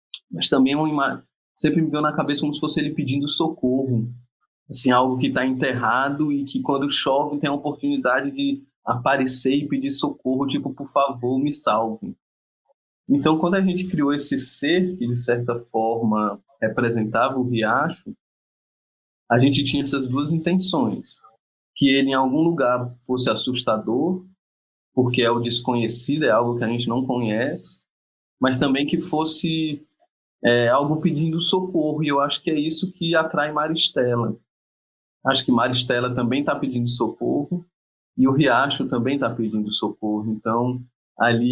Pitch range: 120-150 Hz